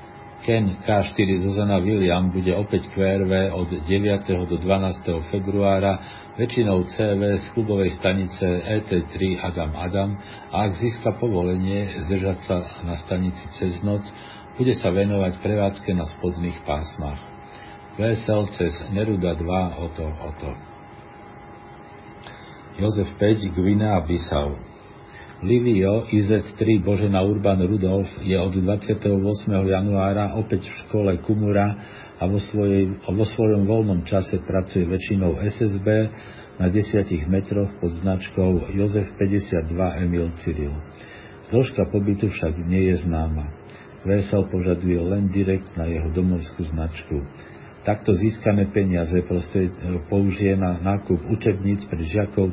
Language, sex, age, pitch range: Slovak, male, 50-69, 90-105 Hz